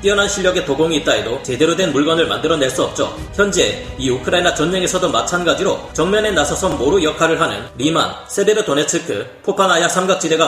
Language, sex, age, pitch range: Korean, male, 30-49, 150-185 Hz